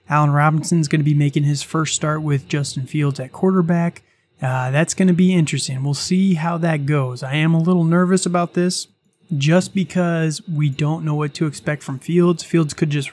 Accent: American